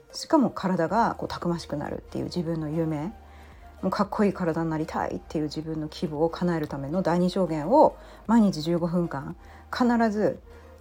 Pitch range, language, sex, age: 160-220 Hz, Japanese, female, 40-59